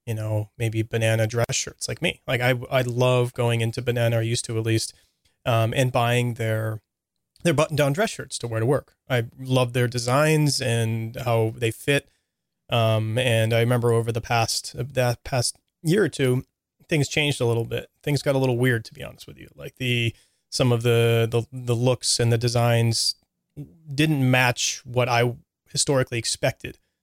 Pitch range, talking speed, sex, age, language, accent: 115-130 Hz, 190 wpm, male, 30-49, English, American